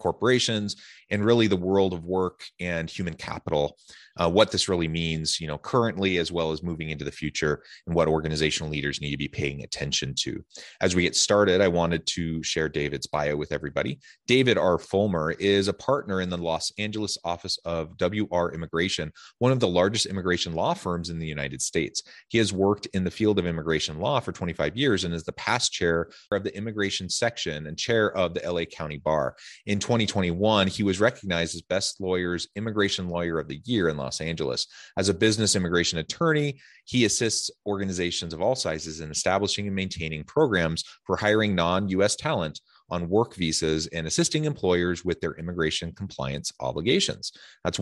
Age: 30-49